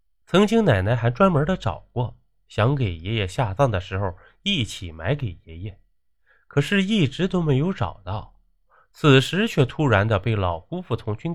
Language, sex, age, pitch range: Chinese, male, 20-39, 95-140 Hz